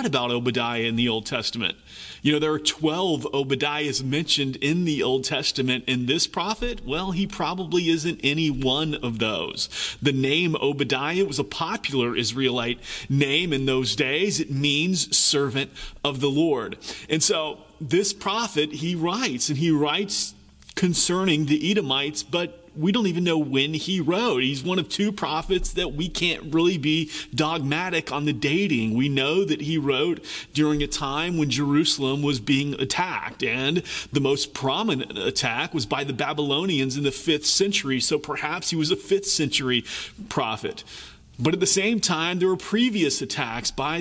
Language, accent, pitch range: English, American, 140-175 Hz